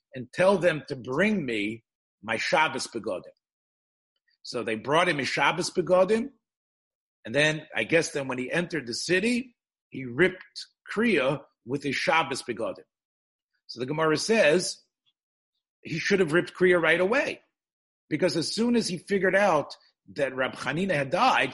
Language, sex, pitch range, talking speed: English, male, 130-185 Hz, 155 wpm